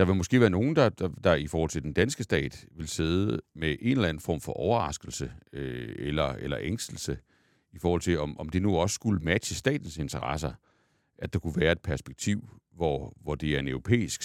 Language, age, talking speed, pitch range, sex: Danish, 60-79, 215 wpm, 80-110 Hz, male